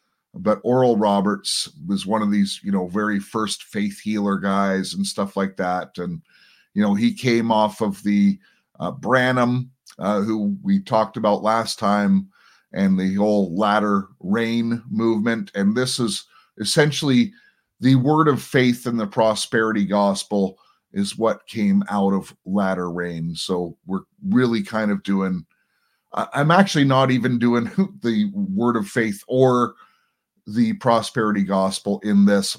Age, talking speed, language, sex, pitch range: 30-49, 150 wpm, English, male, 100-130 Hz